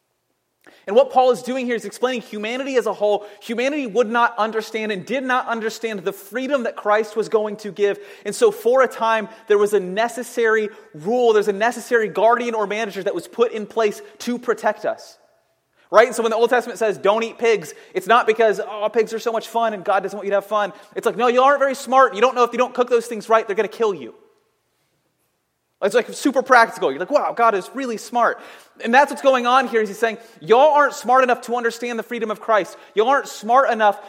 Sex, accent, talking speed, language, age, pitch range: male, American, 240 wpm, English, 30-49, 210-245 Hz